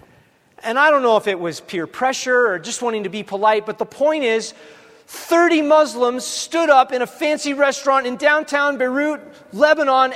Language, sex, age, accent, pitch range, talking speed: English, male, 40-59, American, 175-255 Hz, 185 wpm